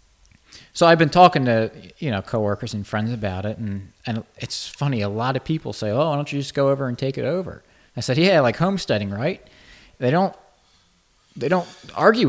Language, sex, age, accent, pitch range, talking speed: English, male, 30-49, American, 100-135 Hz, 210 wpm